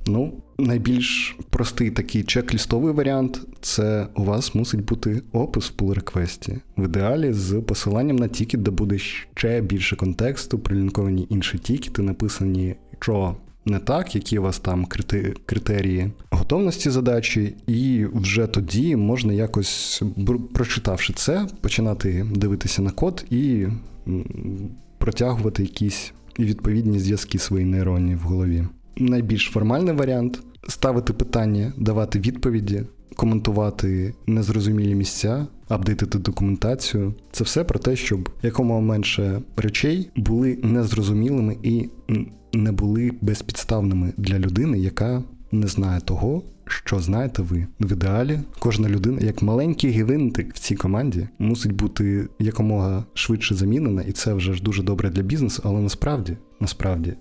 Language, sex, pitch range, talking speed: Ukrainian, male, 100-120 Hz, 130 wpm